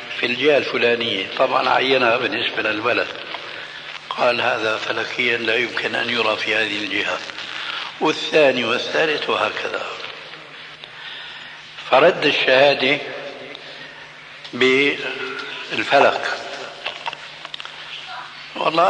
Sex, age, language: male, 60-79, Arabic